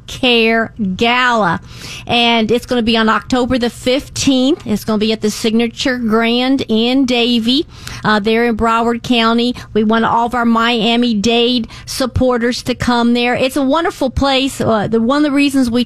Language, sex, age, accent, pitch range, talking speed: English, female, 50-69, American, 220-255 Hz, 180 wpm